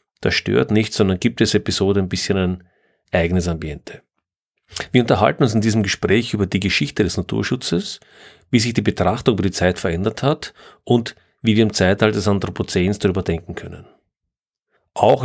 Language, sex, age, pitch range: German, male, 40-59, 90-105 Hz